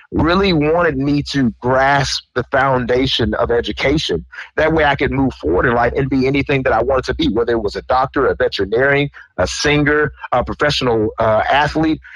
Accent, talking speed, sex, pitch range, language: American, 190 wpm, male, 120-150 Hz, English